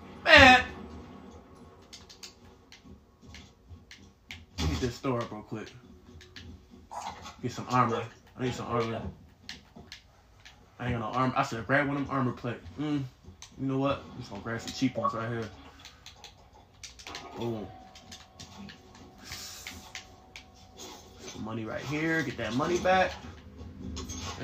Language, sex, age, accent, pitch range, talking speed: English, male, 20-39, American, 90-125 Hz, 120 wpm